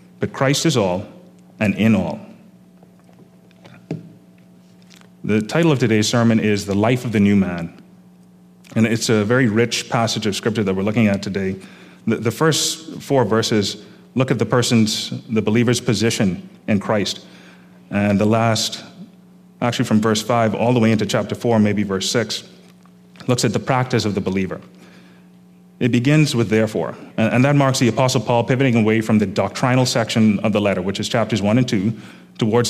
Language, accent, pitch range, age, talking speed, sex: English, American, 100-125 Hz, 30-49, 175 wpm, male